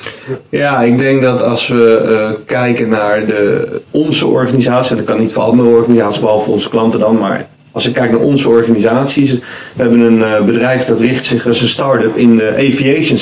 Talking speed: 190 wpm